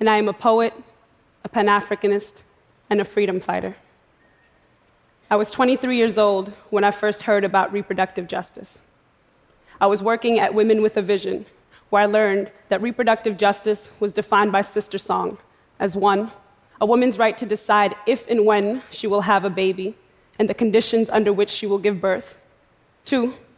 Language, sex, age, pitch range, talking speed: English, female, 20-39, 200-220 Hz, 170 wpm